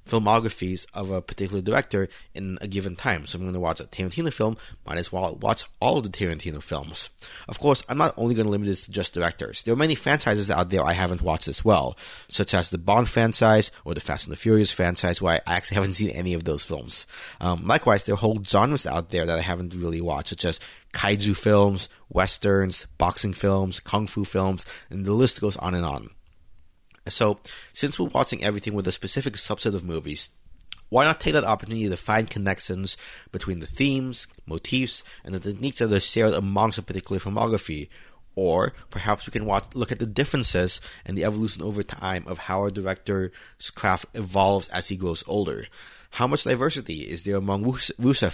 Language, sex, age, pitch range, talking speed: English, male, 30-49, 90-110 Hz, 205 wpm